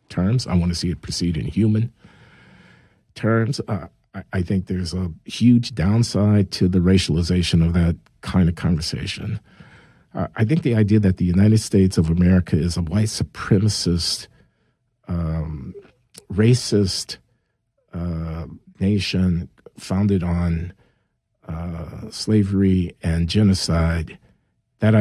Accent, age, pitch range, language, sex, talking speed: American, 50-69, 90-105 Hz, English, male, 120 wpm